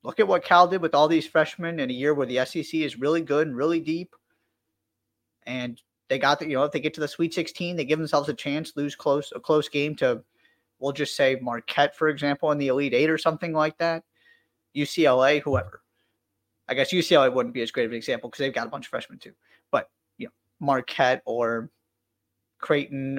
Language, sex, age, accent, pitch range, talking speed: English, male, 30-49, American, 125-160 Hz, 220 wpm